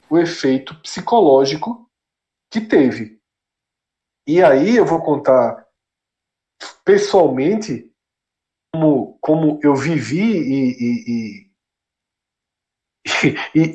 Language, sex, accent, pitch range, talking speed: Portuguese, male, Brazilian, 145-235 Hz, 85 wpm